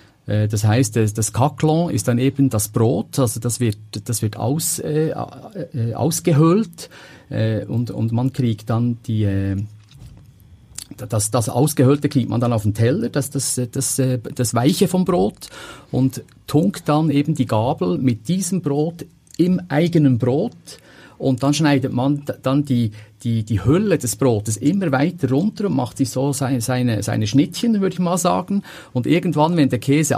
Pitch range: 110-145 Hz